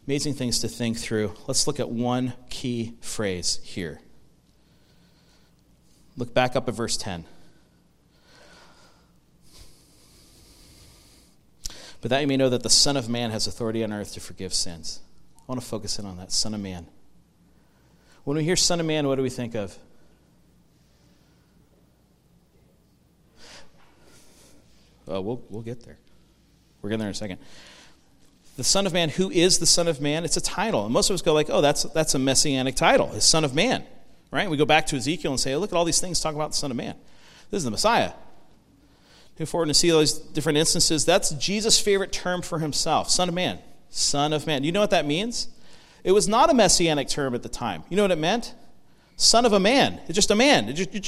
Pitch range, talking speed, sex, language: 115-170 Hz, 195 wpm, male, English